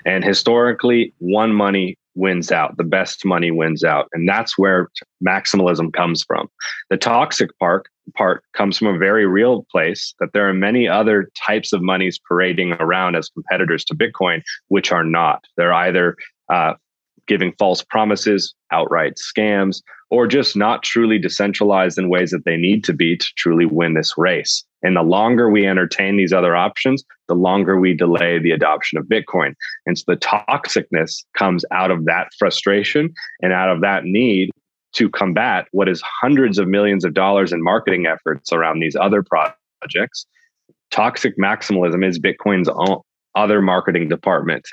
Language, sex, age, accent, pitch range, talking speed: English, male, 30-49, American, 90-105 Hz, 165 wpm